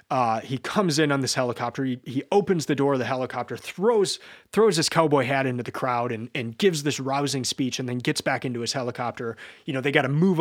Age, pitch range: 30-49, 120-150 Hz